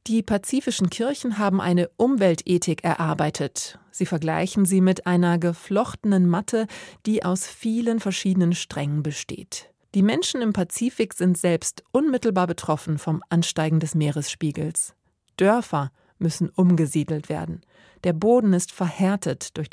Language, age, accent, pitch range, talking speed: German, 30-49, German, 165-200 Hz, 125 wpm